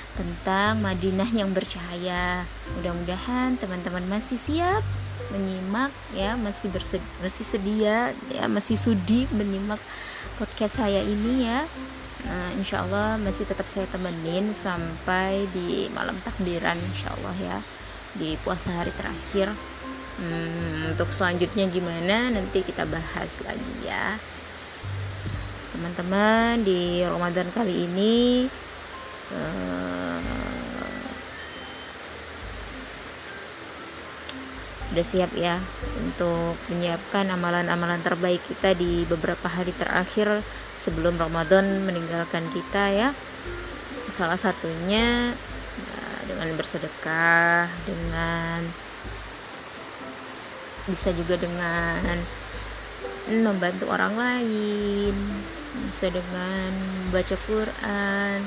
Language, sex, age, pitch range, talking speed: Indonesian, female, 20-39, 165-205 Hz, 85 wpm